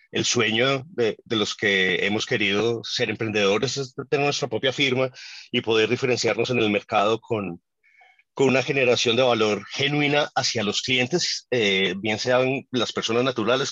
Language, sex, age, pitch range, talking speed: Spanish, male, 30-49, 110-140 Hz, 160 wpm